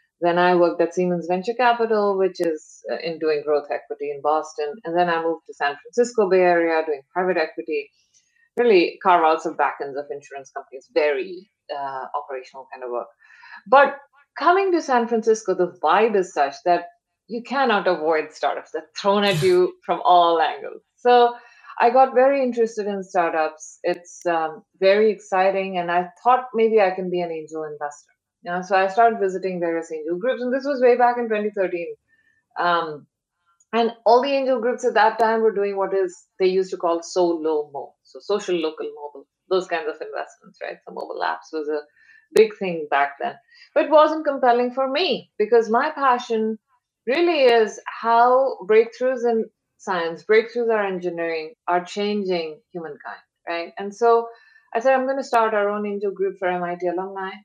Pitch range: 170-245 Hz